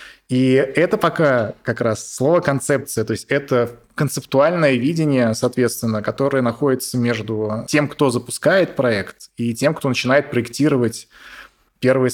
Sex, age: male, 20-39